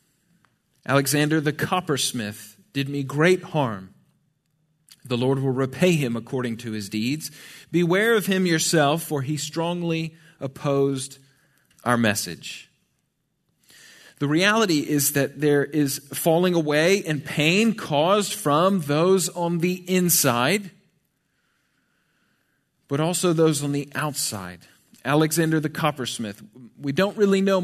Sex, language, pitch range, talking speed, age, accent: male, English, 140-180 Hz, 120 wpm, 40-59, American